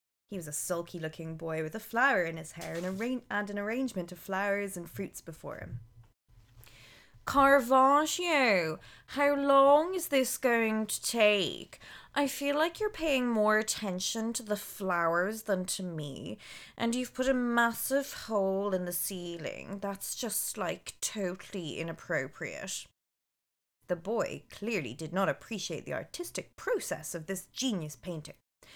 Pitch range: 170-240 Hz